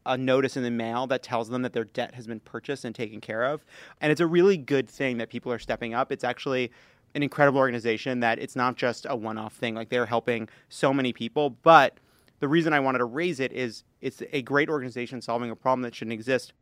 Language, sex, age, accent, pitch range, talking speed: English, male, 30-49, American, 120-140 Hz, 240 wpm